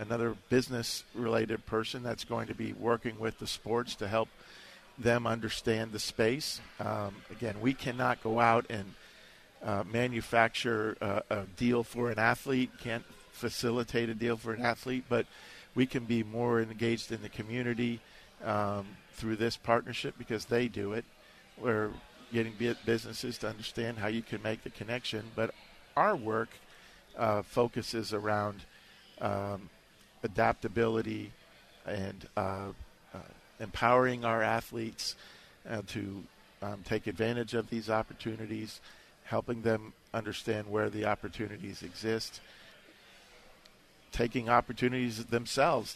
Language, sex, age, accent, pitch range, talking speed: English, male, 50-69, American, 110-120 Hz, 130 wpm